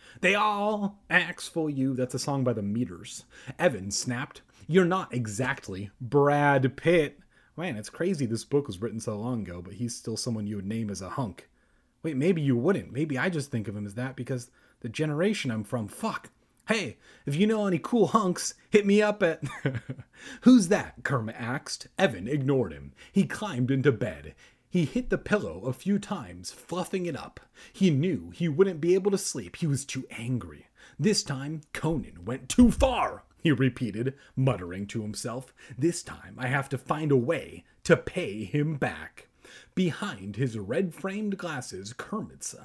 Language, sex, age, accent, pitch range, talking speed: English, male, 30-49, American, 120-175 Hz, 180 wpm